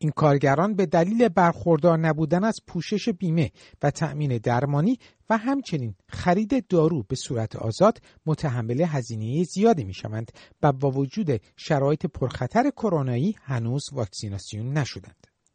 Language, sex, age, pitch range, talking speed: Persian, male, 50-69, 125-180 Hz, 125 wpm